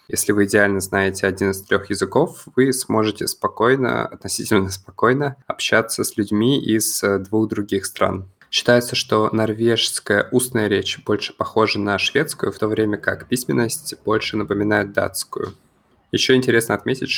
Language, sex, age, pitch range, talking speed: Russian, male, 20-39, 100-110 Hz, 140 wpm